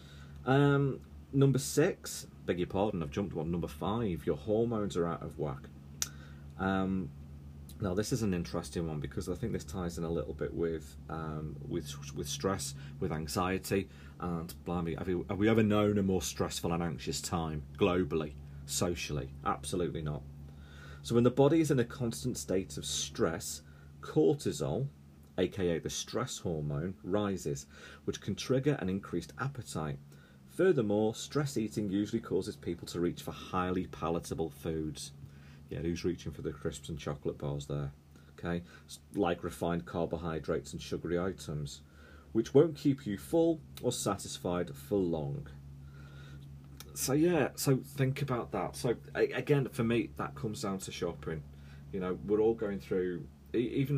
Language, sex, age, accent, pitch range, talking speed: English, male, 40-59, British, 70-100 Hz, 155 wpm